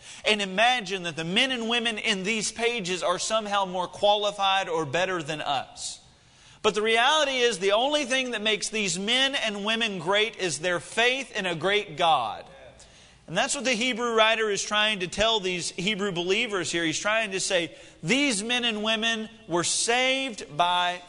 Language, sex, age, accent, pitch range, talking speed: English, male, 40-59, American, 175-230 Hz, 180 wpm